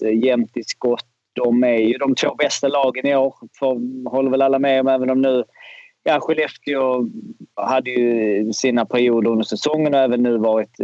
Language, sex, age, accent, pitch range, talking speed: Swedish, male, 30-49, native, 115-145 Hz, 185 wpm